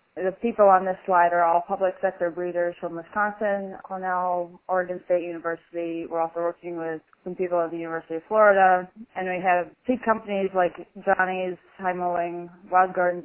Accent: American